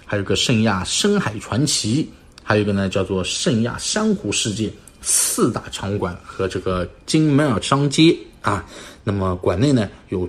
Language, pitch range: Chinese, 95-125 Hz